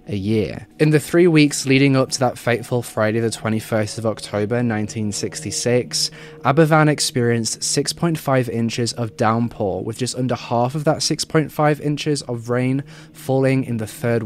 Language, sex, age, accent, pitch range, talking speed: English, male, 20-39, British, 115-145 Hz, 155 wpm